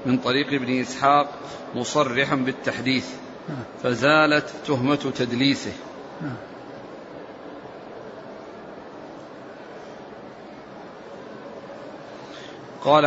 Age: 40-59